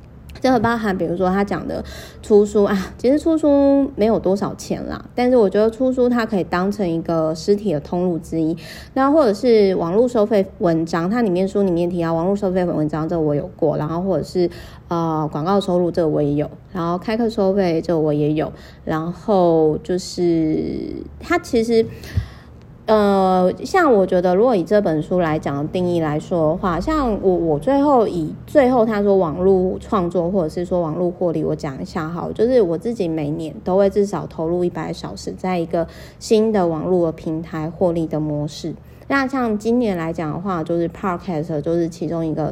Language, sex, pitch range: Chinese, female, 165-210 Hz